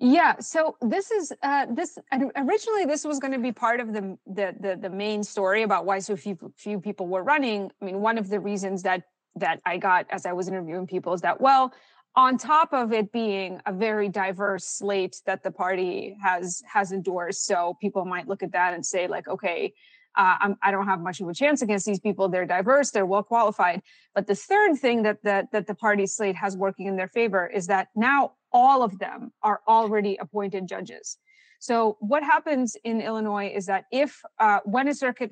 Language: English